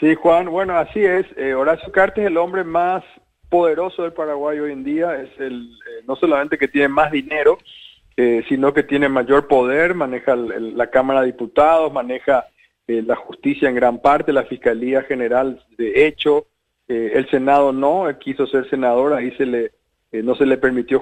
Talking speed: 190 wpm